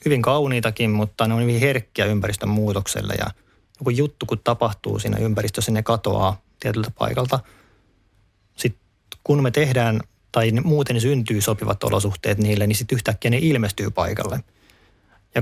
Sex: male